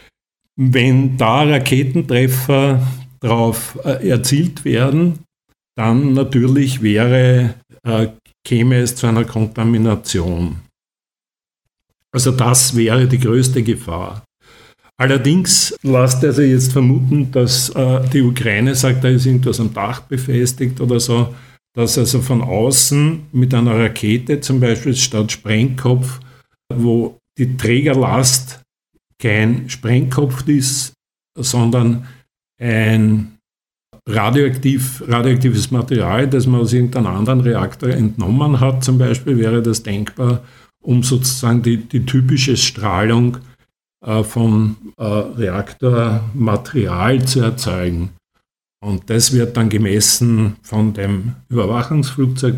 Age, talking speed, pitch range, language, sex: 50-69, 105 wpm, 110-130 Hz, German, male